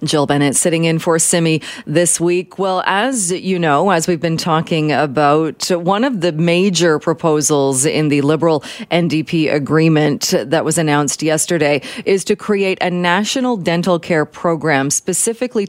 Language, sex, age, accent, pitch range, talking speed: English, female, 30-49, American, 145-175 Hz, 155 wpm